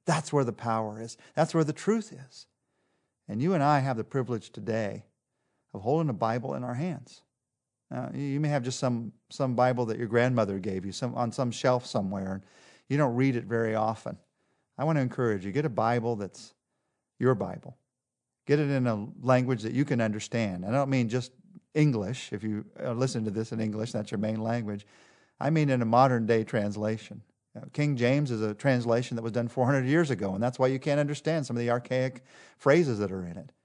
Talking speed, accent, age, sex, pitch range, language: 210 wpm, American, 40-59, male, 110-140 Hz, English